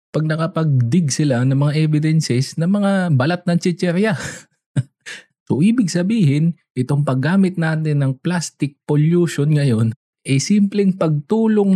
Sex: male